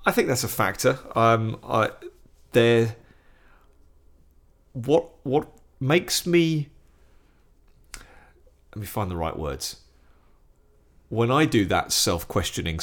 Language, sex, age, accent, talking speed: English, male, 40-59, British, 110 wpm